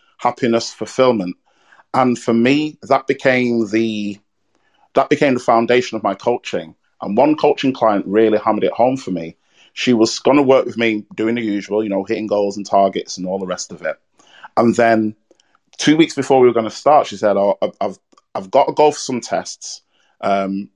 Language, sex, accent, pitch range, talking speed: English, male, British, 100-125 Hz, 200 wpm